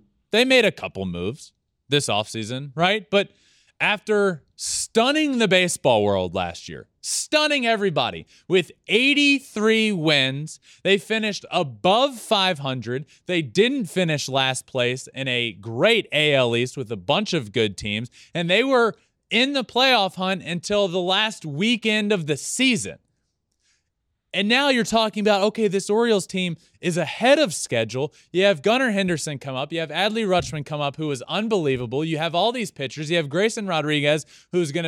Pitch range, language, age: 145-215 Hz, English, 20-39